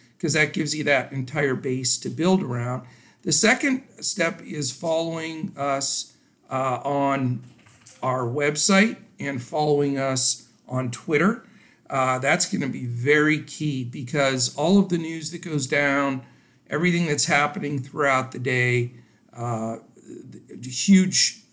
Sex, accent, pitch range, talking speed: male, American, 130-165 Hz, 130 wpm